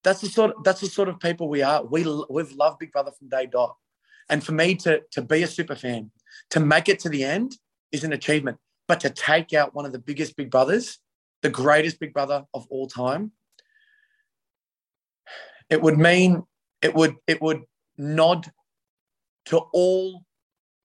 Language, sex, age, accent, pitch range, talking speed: English, male, 30-49, Australian, 135-165 Hz, 165 wpm